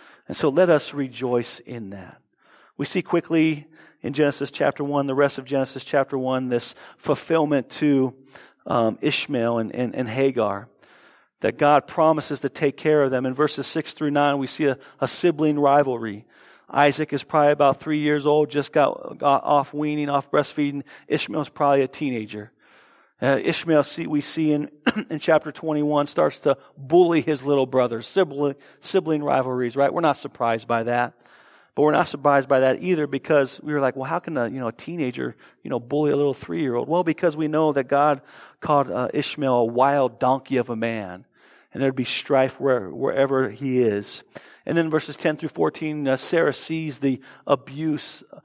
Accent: American